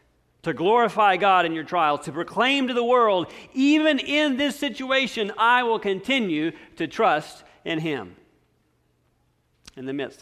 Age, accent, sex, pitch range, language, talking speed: 40-59, American, male, 155-195 Hz, English, 145 wpm